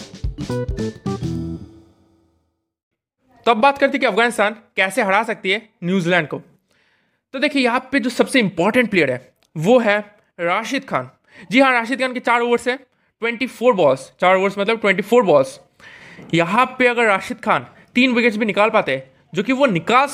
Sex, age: male, 20-39